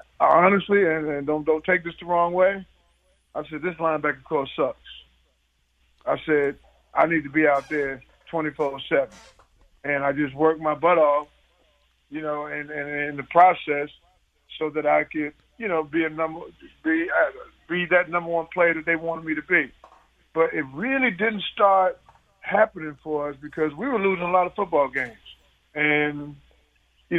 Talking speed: 180 wpm